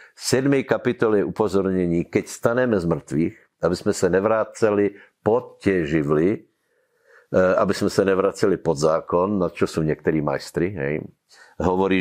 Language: Slovak